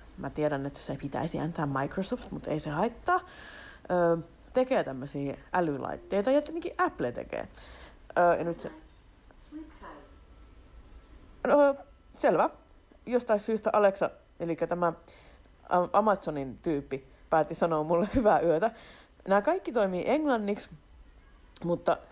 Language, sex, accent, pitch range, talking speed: Finnish, female, native, 150-230 Hz, 115 wpm